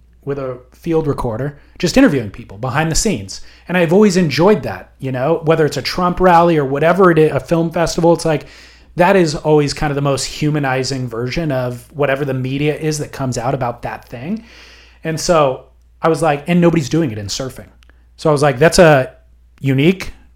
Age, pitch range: 30-49, 125-160 Hz